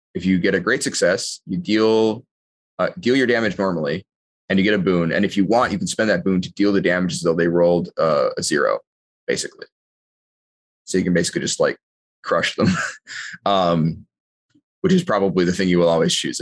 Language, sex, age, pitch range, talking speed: English, male, 20-39, 90-105 Hz, 210 wpm